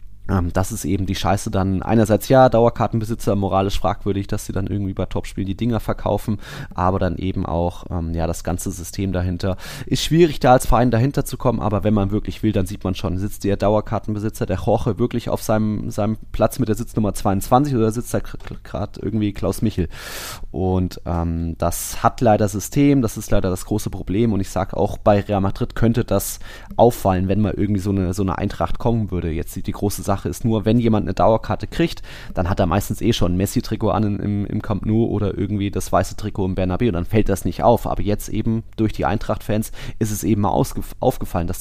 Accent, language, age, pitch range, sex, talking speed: German, German, 20-39, 95-115 Hz, male, 220 wpm